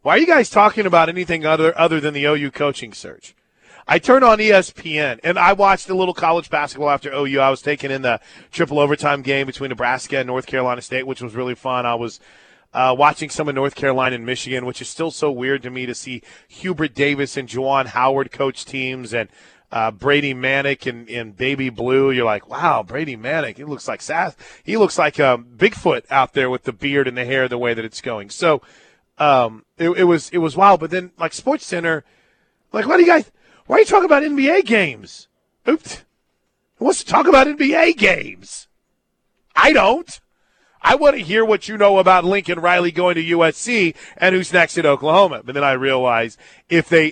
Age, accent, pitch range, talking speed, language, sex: 30-49, American, 130-175 Hz, 210 wpm, English, male